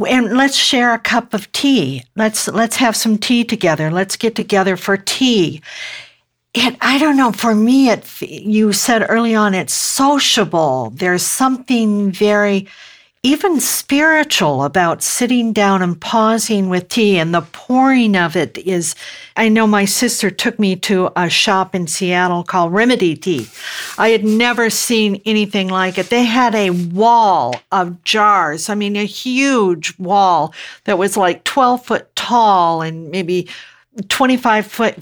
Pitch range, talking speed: 185-240 Hz, 155 wpm